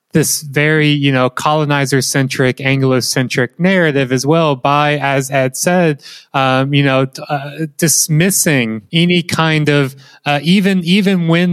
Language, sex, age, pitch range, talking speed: English, male, 20-39, 135-160 Hz, 130 wpm